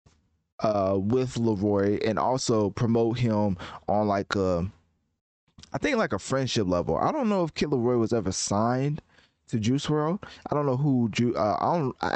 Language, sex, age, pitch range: English, male, 20-39, 95-120 Hz